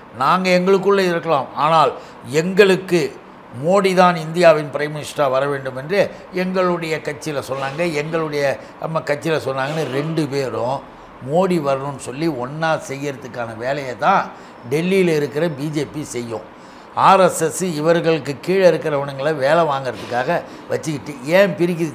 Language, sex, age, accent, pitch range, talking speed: Tamil, male, 60-79, native, 140-175 Hz, 115 wpm